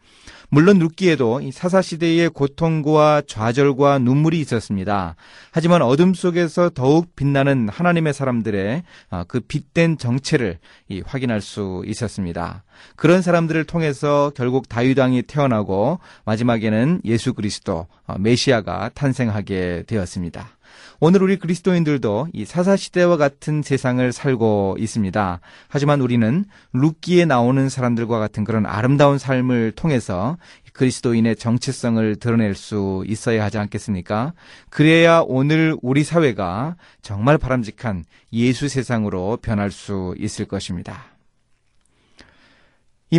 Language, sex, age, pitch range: Korean, male, 30-49, 105-150 Hz